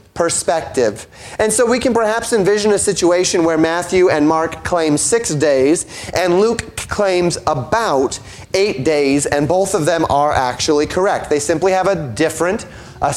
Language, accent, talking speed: English, American, 160 wpm